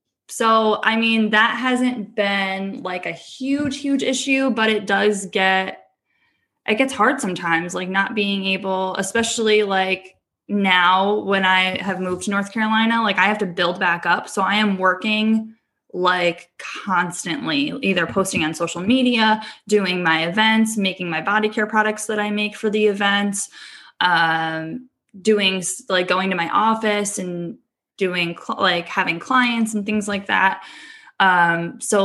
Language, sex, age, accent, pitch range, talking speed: English, female, 10-29, American, 175-215 Hz, 155 wpm